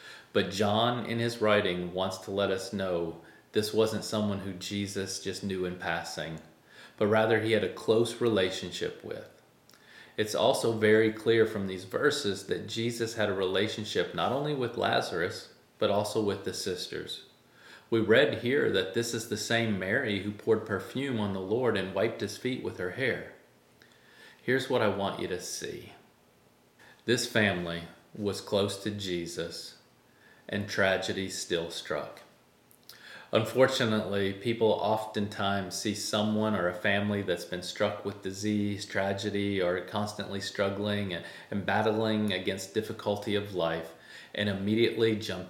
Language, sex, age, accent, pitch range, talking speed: English, male, 40-59, American, 95-110 Hz, 150 wpm